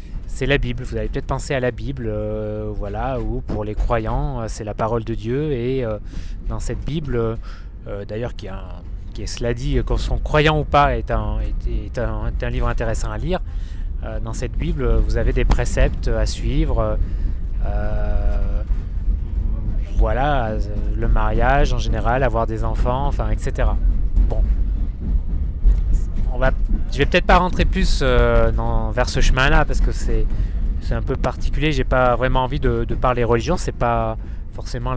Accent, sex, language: French, male, French